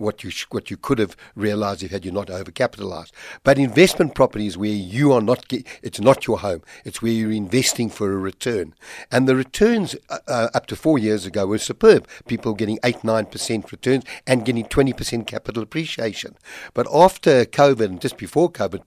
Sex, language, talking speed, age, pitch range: male, English, 195 wpm, 60-79, 105-135 Hz